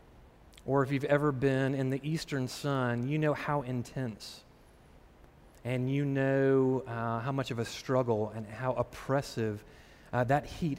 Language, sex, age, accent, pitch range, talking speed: English, male, 30-49, American, 115-145 Hz, 155 wpm